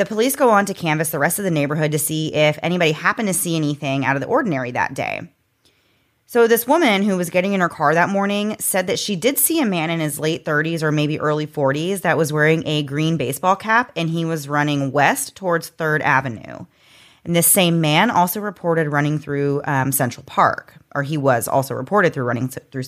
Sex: female